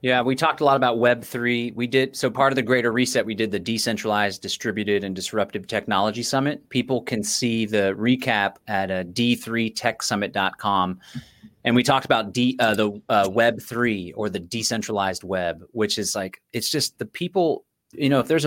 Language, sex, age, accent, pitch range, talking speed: English, male, 30-49, American, 105-135 Hz, 180 wpm